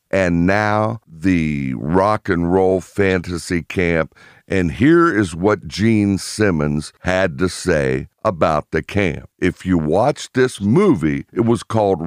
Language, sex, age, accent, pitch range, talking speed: English, male, 60-79, American, 90-115 Hz, 140 wpm